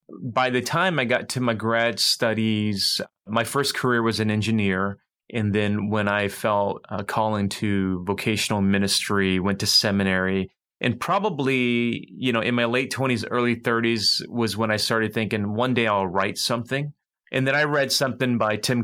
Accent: American